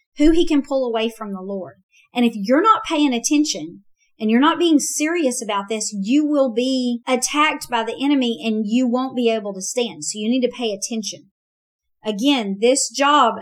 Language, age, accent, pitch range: English, 40-59, American, 215-265 Hz